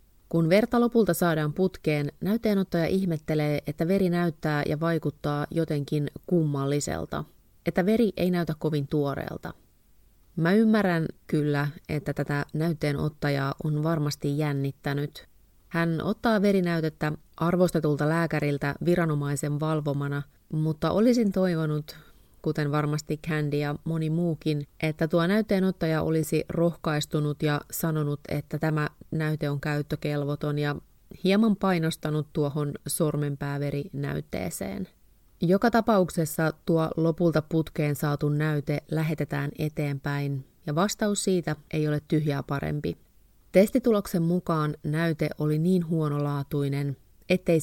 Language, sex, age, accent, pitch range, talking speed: Finnish, female, 30-49, native, 145-170 Hz, 105 wpm